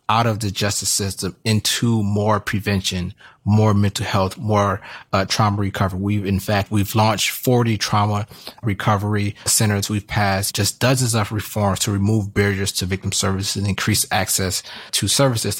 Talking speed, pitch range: 160 wpm, 95-110 Hz